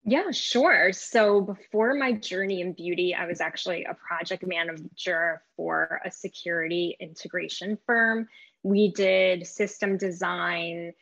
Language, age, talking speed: English, 10-29, 125 wpm